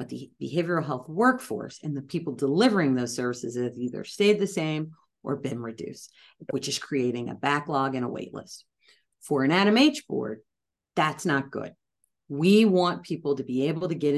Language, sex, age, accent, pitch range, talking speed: English, female, 40-59, American, 130-180 Hz, 185 wpm